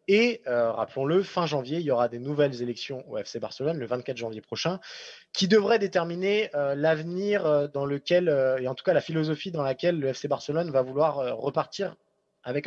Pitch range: 135-175 Hz